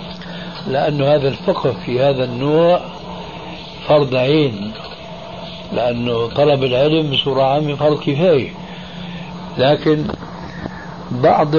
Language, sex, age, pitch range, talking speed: Arabic, male, 60-79, 130-165 Hz, 90 wpm